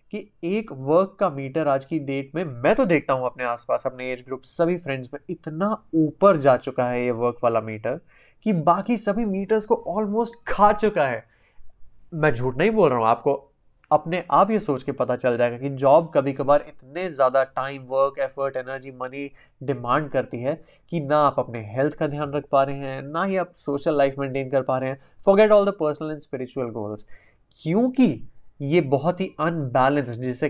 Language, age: Hindi, 20-39